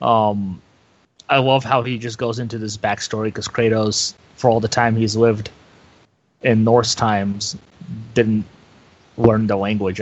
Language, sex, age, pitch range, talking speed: English, male, 30-49, 110-145 Hz, 150 wpm